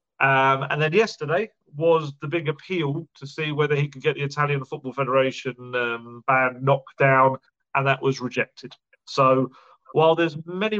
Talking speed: 165 wpm